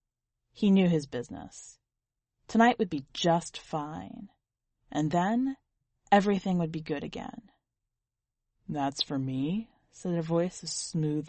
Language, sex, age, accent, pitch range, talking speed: English, female, 30-49, American, 135-185 Hz, 130 wpm